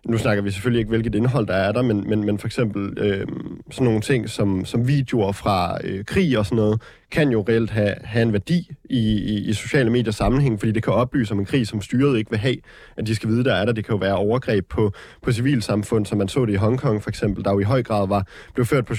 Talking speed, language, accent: 270 wpm, Danish, native